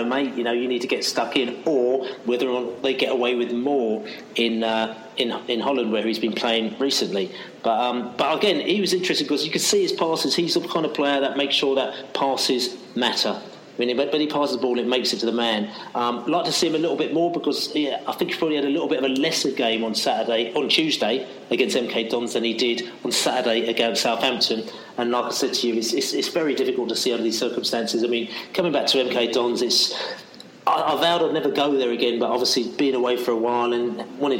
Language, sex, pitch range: English, male, 115-135 Hz